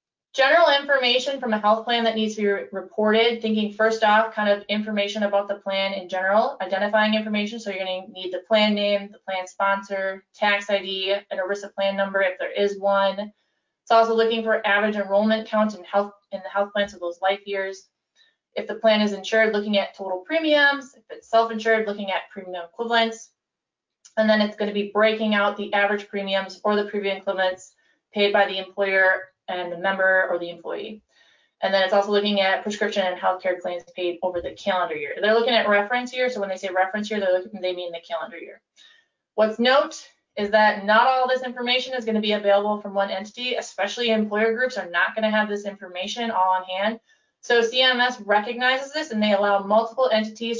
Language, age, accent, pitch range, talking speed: English, 20-39, American, 195-225 Hz, 200 wpm